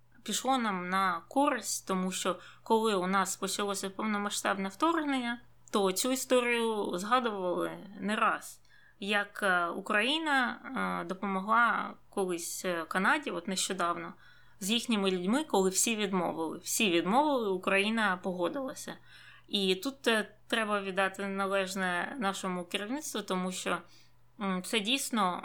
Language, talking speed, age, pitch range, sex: Ukrainian, 110 wpm, 20-39, 185-230 Hz, female